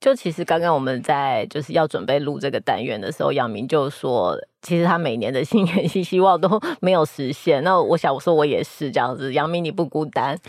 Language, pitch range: Chinese, 155-190 Hz